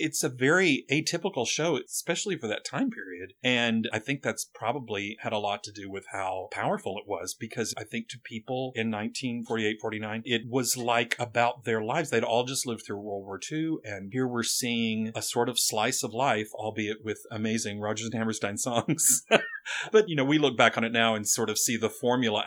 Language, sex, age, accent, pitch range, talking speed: English, male, 40-59, American, 105-125 Hz, 210 wpm